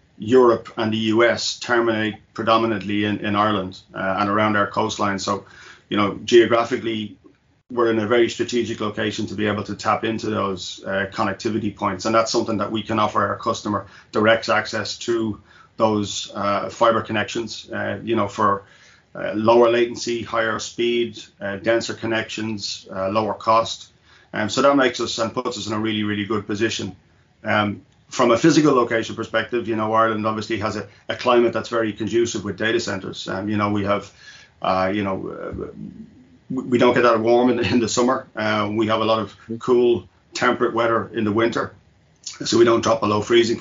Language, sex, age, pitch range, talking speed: English, male, 30-49, 105-115 Hz, 185 wpm